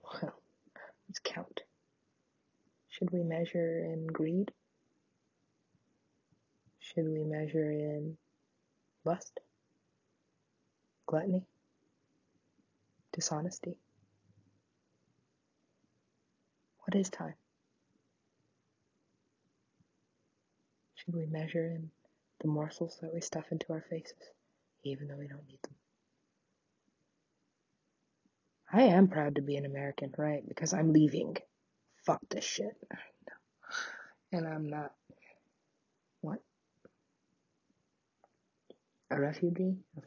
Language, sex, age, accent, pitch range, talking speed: English, female, 30-49, American, 150-175 Hz, 85 wpm